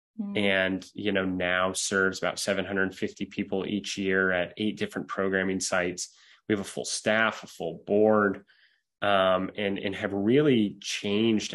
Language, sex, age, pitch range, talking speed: English, male, 20-39, 95-105 Hz, 150 wpm